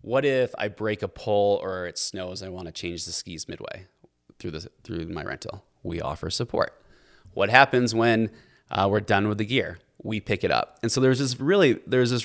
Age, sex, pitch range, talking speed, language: 20-39, male, 95-135 Hz, 215 wpm, English